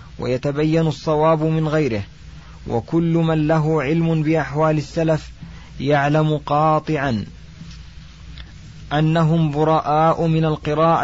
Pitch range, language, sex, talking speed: 140-165 Hz, Arabic, male, 85 wpm